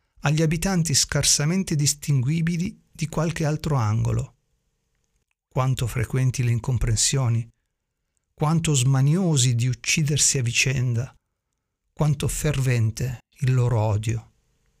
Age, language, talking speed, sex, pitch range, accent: 50-69, Italian, 95 wpm, male, 115-145 Hz, native